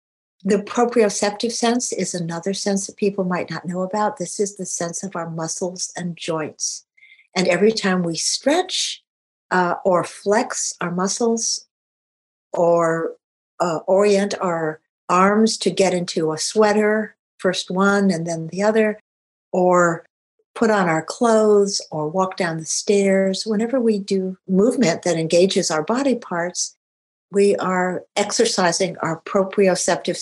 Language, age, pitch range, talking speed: English, 60-79, 175-215 Hz, 140 wpm